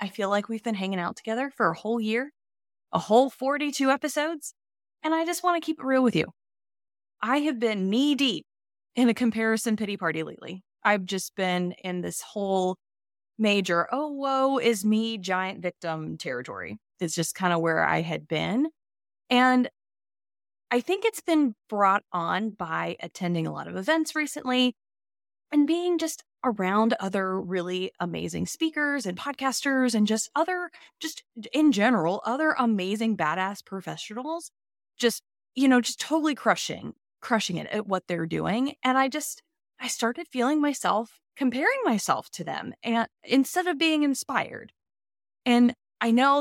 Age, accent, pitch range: 20-39, American, 190-275 Hz